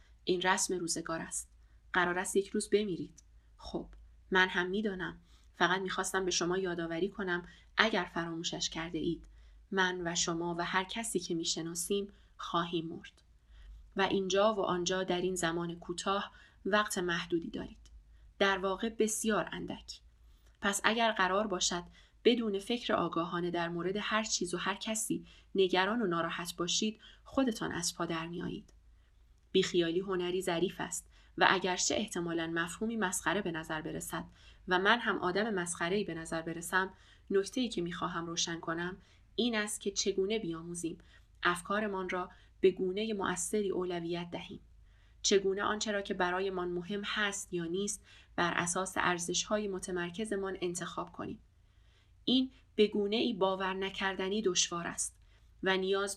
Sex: female